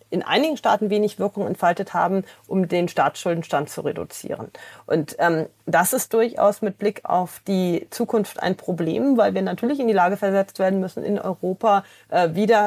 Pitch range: 180-220 Hz